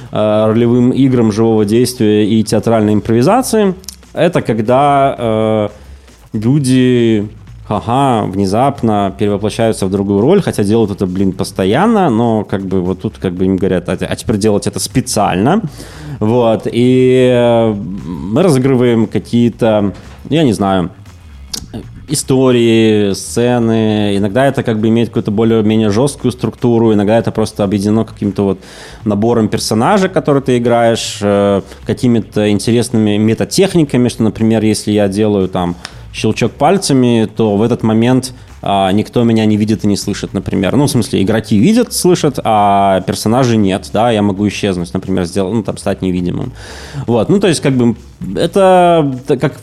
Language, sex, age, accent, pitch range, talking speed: Russian, male, 20-39, native, 105-140 Hz, 145 wpm